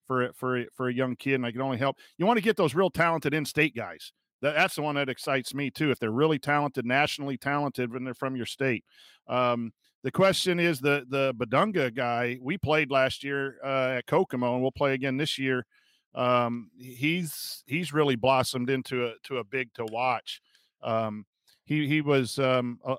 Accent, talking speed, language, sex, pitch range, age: American, 205 wpm, English, male, 125-145 Hz, 40-59